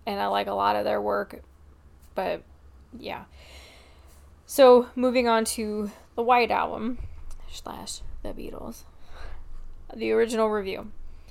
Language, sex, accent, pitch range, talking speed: English, female, American, 200-230 Hz, 120 wpm